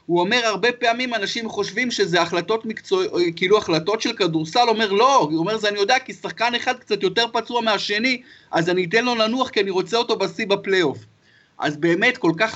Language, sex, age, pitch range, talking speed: Hebrew, male, 30-49, 170-225 Hz, 200 wpm